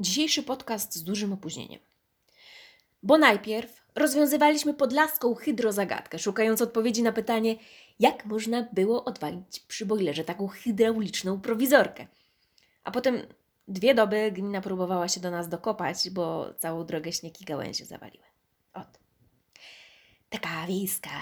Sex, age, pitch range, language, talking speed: female, 20-39, 180-265 Hz, Polish, 115 wpm